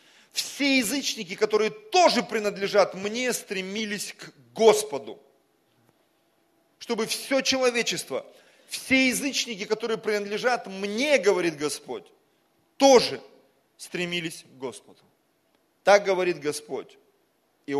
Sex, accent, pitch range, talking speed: male, native, 125-205 Hz, 90 wpm